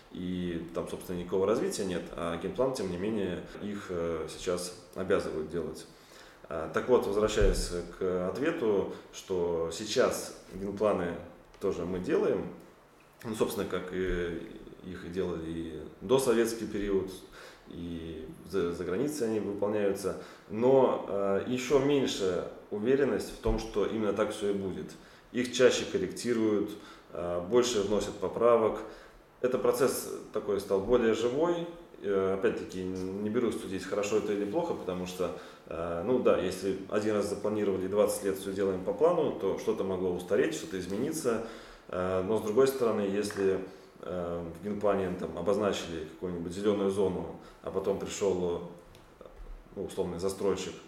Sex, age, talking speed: male, 20-39, 140 wpm